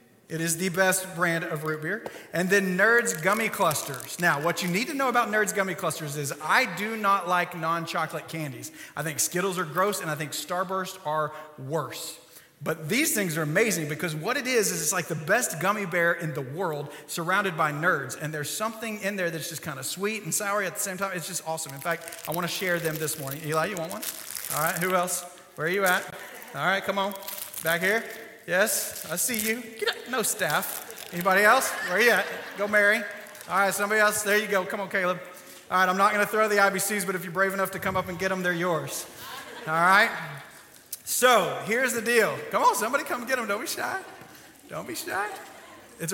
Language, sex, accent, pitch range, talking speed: English, male, American, 165-205 Hz, 225 wpm